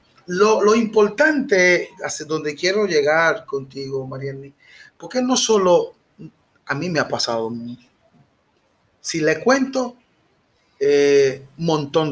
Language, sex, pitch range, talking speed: Spanish, male, 140-215 Hz, 115 wpm